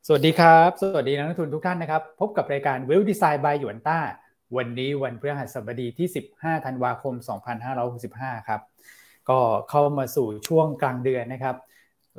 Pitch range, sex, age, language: 125-150 Hz, male, 20-39, Thai